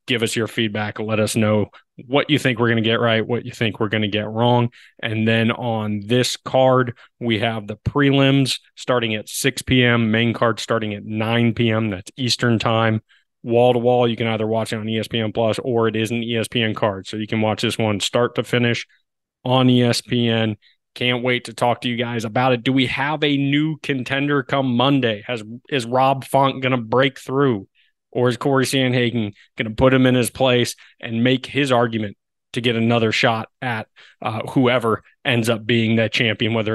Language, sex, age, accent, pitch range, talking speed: English, male, 20-39, American, 115-130 Hz, 205 wpm